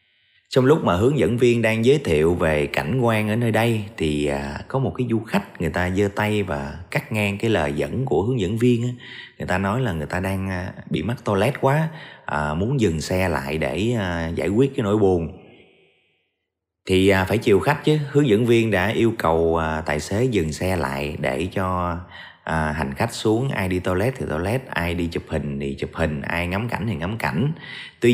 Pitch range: 85-115 Hz